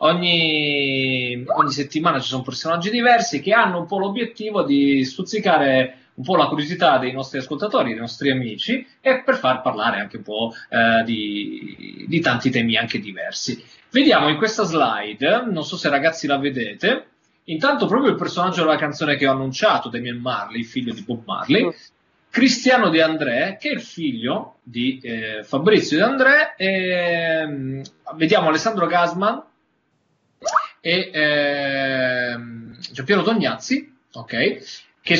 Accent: native